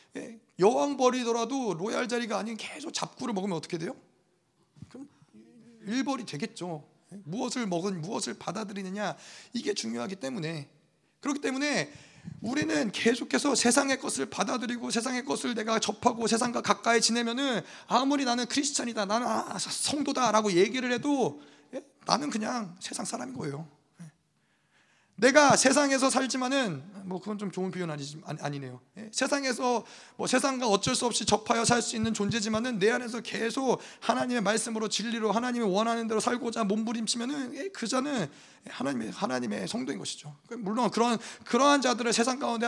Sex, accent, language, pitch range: male, native, Korean, 190-250 Hz